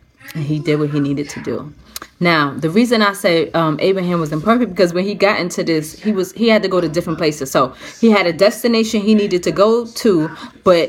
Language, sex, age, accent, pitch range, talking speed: English, female, 30-49, American, 170-225 Hz, 235 wpm